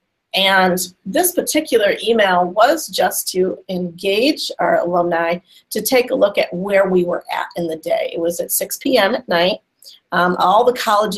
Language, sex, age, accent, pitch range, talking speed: English, female, 40-59, American, 175-210 Hz, 175 wpm